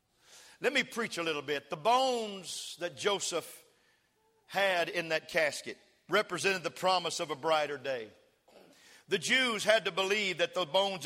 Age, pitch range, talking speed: 50-69, 160-195 Hz, 155 wpm